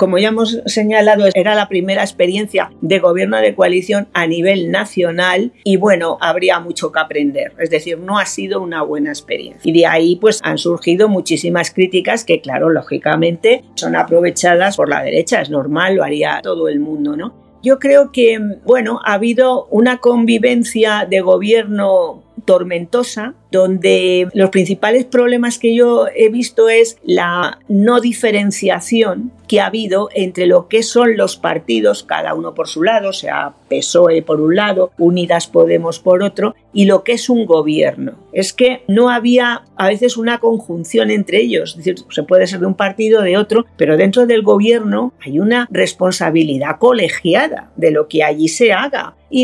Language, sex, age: Spanish, female, 40-59